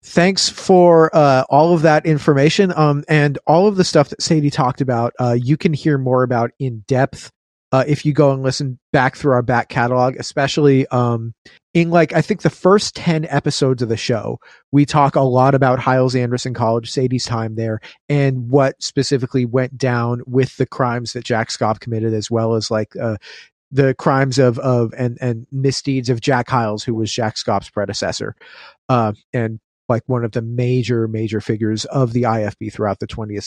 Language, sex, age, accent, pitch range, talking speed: English, male, 30-49, American, 120-145 Hz, 190 wpm